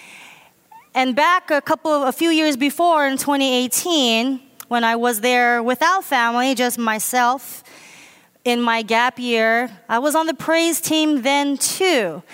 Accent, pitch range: American, 245-300 Hz